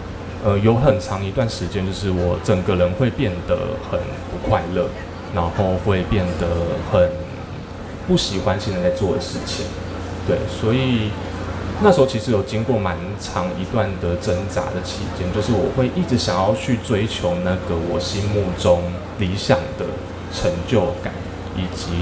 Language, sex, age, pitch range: Chinese, male, 20-39, 90-110 Hz